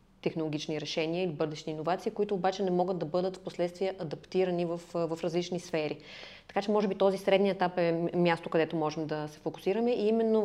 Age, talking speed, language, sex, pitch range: 30-49, 190 wpm, Bulgarian, female, 170-200 Hz